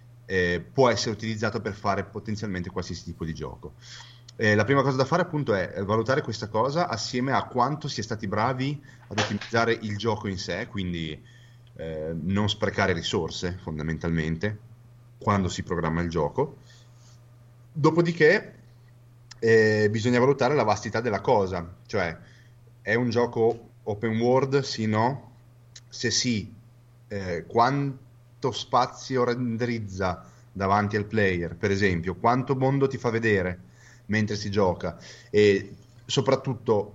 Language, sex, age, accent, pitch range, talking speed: Italian, male, 30-49, native, 105-125 Hz, 135 wpm